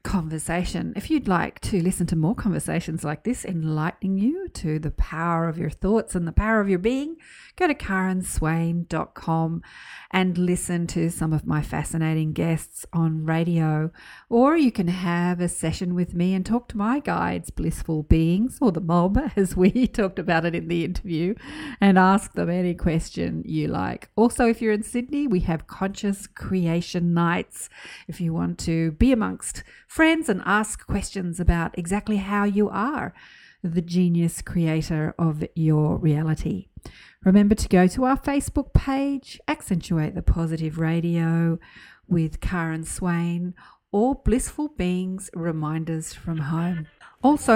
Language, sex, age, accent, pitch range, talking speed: English, female, 40-59, Australian, 165-215 Hz, 155 wpm